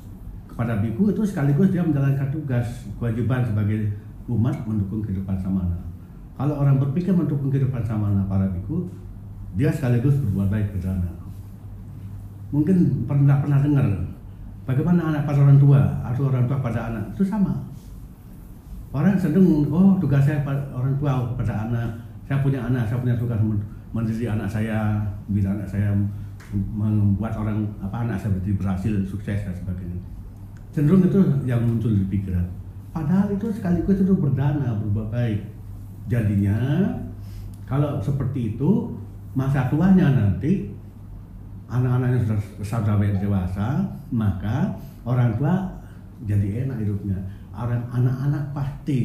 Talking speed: 140 wpm